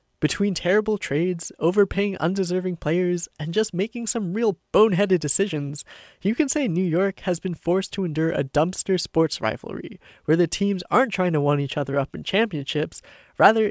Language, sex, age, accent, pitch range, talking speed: English, male, 20-39, American, 150-195 Hz, 175 wpm